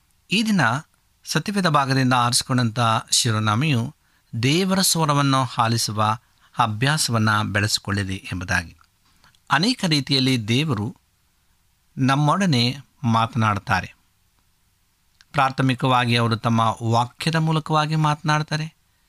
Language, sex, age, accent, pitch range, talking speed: Kannada, male, 50-69, native, 105-140 Hz, 70 wpm